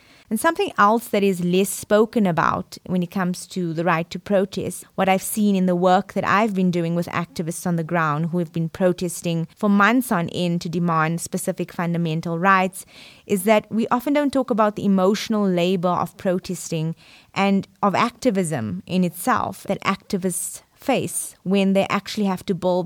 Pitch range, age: 175-205 Hz, 20-39